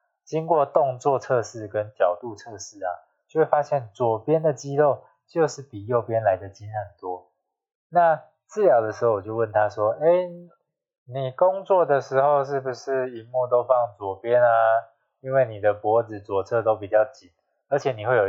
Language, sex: Chinese, male